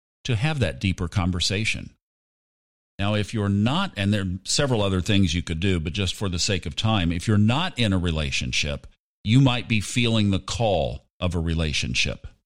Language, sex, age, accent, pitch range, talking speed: English, male, 50-69, American, 95-130 Hz, 195 wpm